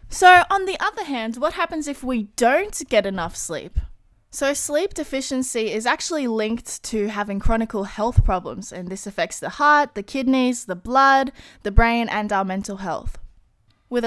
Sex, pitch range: female, 210-285 Hz